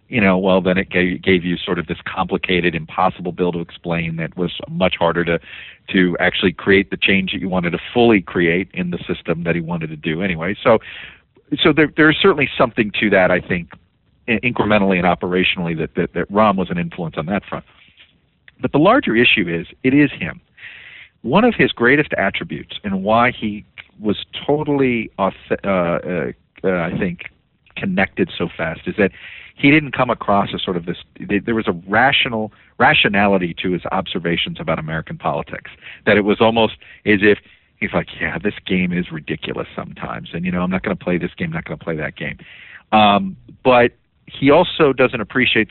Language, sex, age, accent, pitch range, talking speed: English, male, 50-69, American, 90-120 Hz, 195 wpm